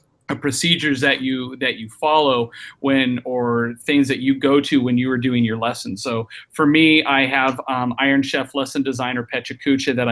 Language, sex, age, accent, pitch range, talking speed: English, male, 30-49, American, 125-140 Hz, 190 wpm